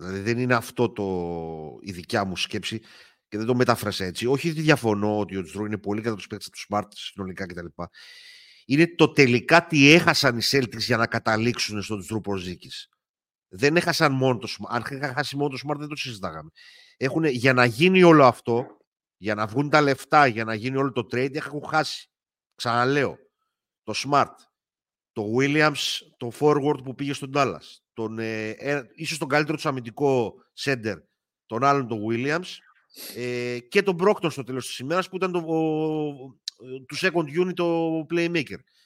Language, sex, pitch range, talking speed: Greek, male, 115-165 Hz, 185 wpm